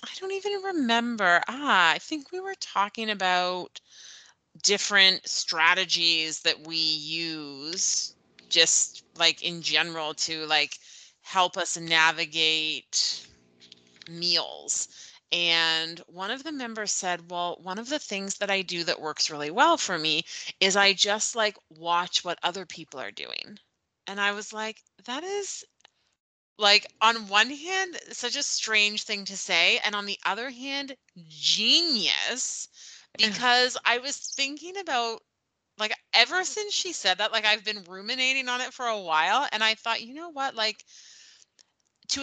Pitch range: 170-245 Hz